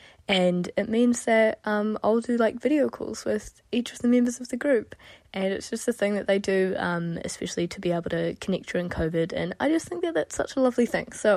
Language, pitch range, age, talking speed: English, 175-225 Hz, 10-29, 245 wpm